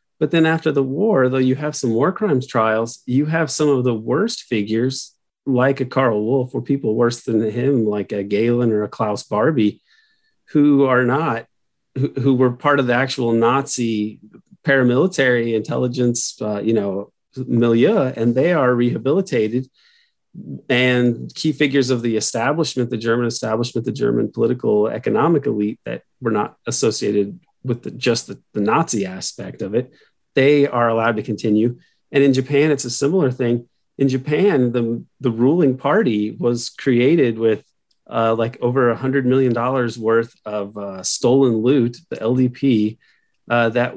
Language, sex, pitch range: English, male, 115-140 Hz